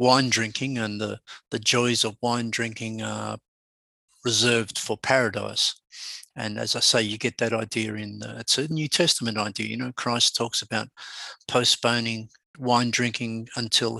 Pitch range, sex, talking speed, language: 110-125 Hz, male, 155 wpm, English